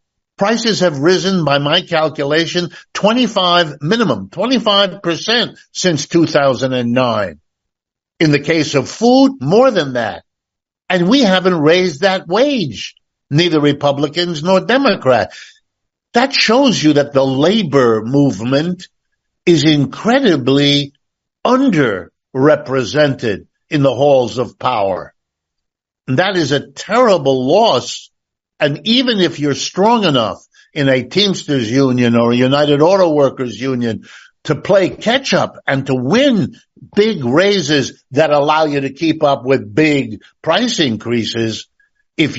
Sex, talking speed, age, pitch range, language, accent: male, 120 wpm, 60-79, 135-190 Hz, English, American